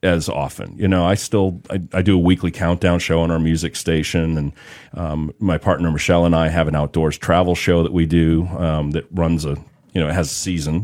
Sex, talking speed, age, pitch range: male, 235 wpm, 40-59, 80-105 Hz